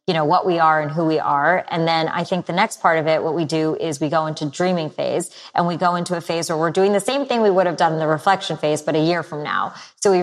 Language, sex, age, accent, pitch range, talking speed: English, female, 30-49, American, 160-195 Hz, 315 wpm